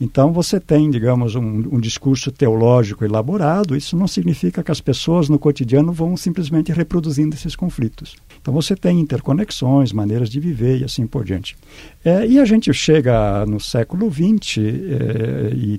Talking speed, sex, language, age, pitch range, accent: 165 wpm, male, Portuguese, 60-79, 115-160 Hz, Brazilian